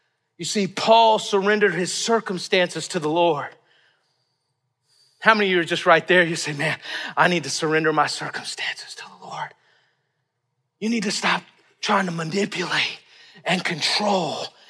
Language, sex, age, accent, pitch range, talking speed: English, male, 40-59, American, 155-205 Hz, 155 wpm